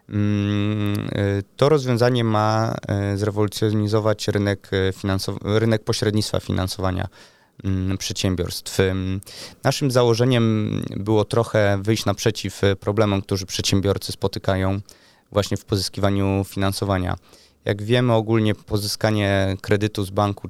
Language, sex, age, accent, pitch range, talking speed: Polish, male, 20-39, native, 100-110 Hz, 90 wpm